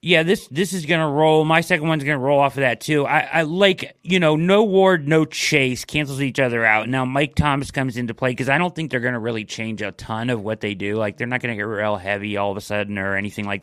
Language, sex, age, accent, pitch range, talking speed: English, male, 30-49, American, 100-135 Hz, 290 wpm